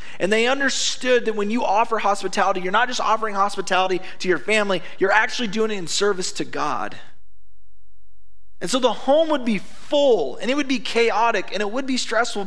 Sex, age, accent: male, 30-49, American